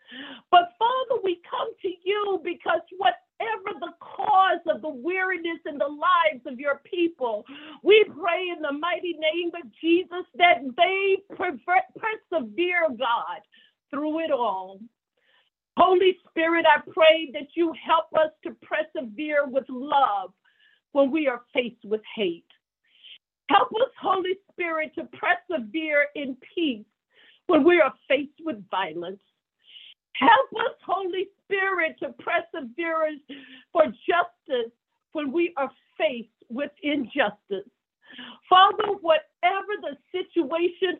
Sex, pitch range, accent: female, 275-365 Hz, American